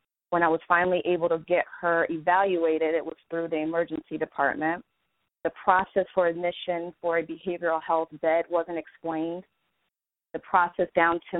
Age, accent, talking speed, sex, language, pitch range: 30-49, American, 160 wpm, female, English, 165-180 Hz